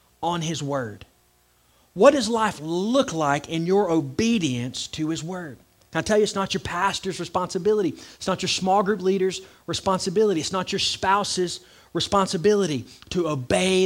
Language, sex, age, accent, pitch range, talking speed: English, male, 30-49, American, 150-210 Hz, 160 wpm